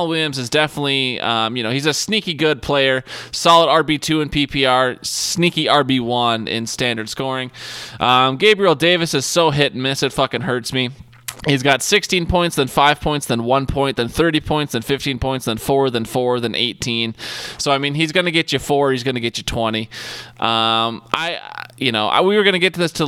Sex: male